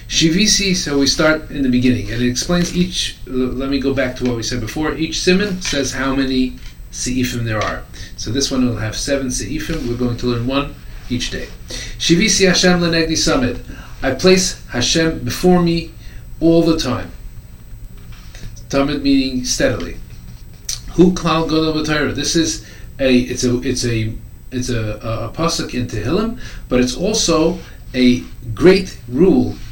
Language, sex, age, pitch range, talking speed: English, male, 40-59, 120-160 Hz, 160 wpm